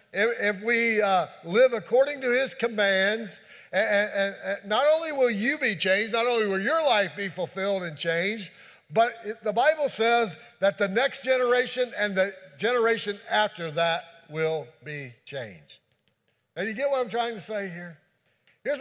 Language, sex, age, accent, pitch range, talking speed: English, male, 50-69, American, 185-245 Hz, 155 wpm